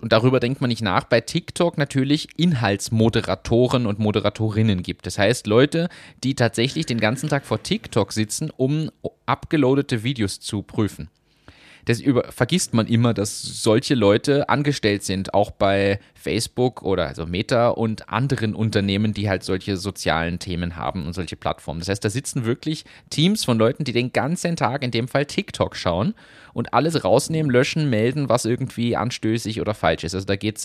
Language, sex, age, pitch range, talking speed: German, male, 30-49, 100-130 Hz, 175 wpm